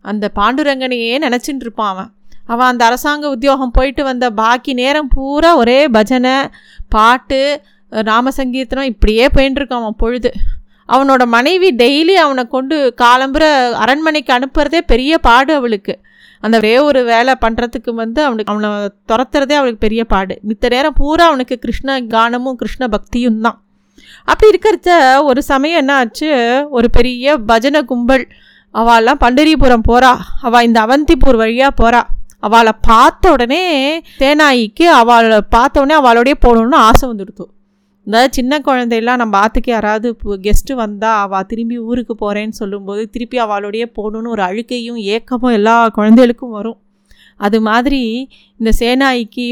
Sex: female